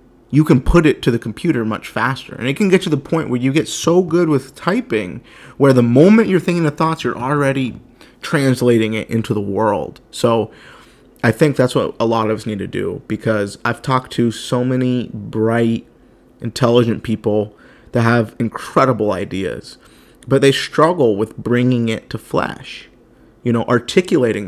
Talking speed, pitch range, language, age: 180 wpm, 110-130 Hz, English, 30-49